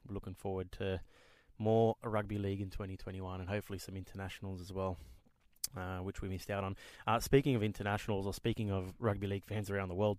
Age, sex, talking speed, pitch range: 20-39, male, 195 wpm, 95-110 Hz